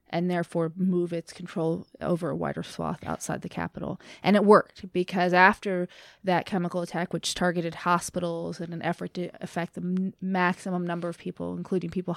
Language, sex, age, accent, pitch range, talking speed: English, female, 20-39, American, 175-205 Hz, 175 wpm